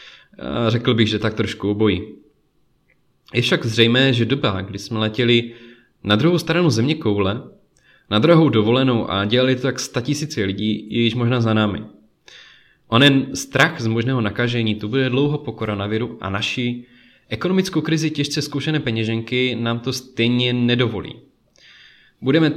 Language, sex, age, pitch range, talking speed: Czech, male, 20-39, 110-125 Hz, 150 wpm